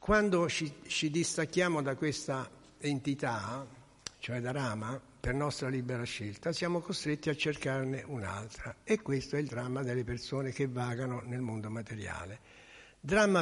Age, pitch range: 60-79, 120-155 Hz